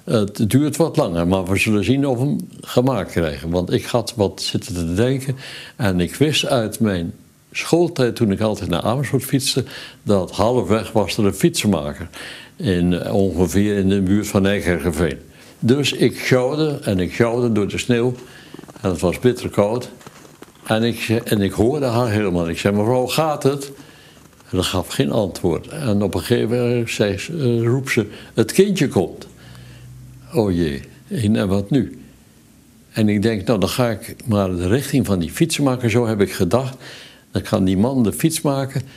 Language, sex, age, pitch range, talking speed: Dutch, male, 60-79, 95-130 Hz, 175 wpm